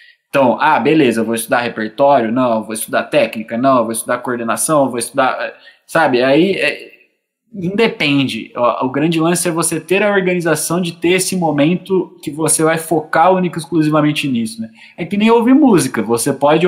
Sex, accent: male, Brazilian